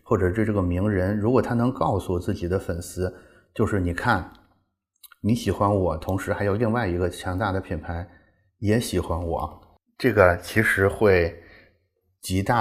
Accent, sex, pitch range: native, male, 90-110 Hz